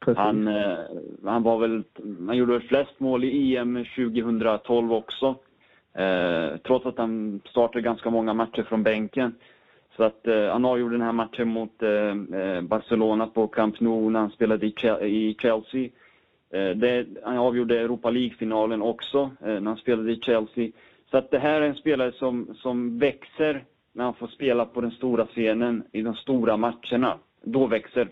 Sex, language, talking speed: male, English, 175 wpm